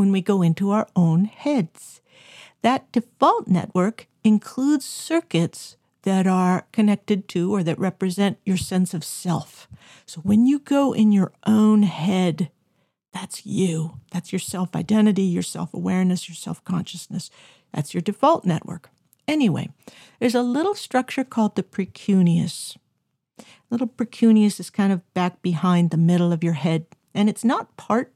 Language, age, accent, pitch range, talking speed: English, 50-69, American, 175-230 Hz, 145 wpm